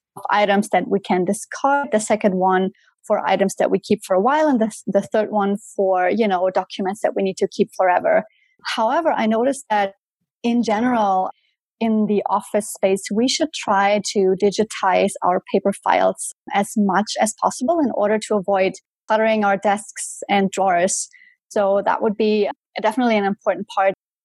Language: English